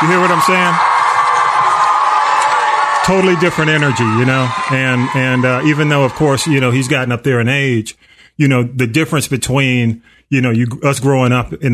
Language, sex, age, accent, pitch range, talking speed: English, male, 30-49, American, 115-135 Hz, 190 wpm